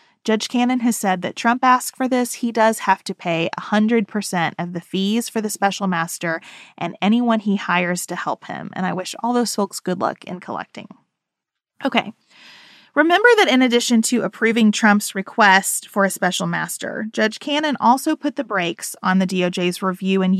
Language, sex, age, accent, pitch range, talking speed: English, female, 30-49, American, 185-240 Hz, 185 wpm